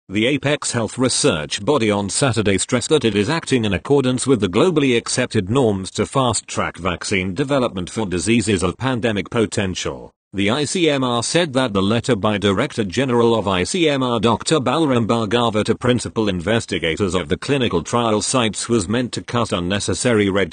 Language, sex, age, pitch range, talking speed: English, male, 40-59, 100-130 Hz, 165 wpm